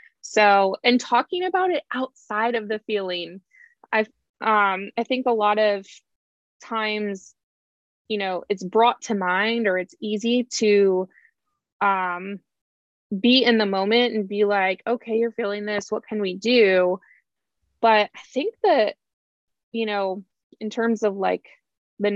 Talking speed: 145 wpm